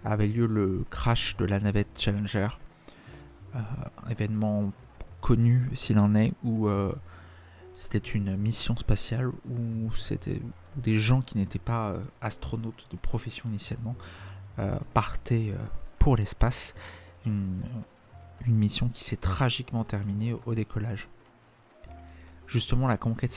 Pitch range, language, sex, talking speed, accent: 100-120 Hz, French, male, 130 wpm, French